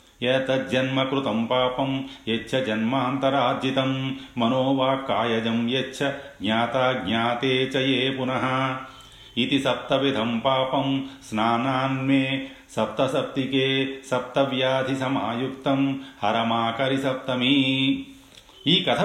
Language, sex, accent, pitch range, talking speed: Telugu, male, native, 110-135 Hz, 30 wpm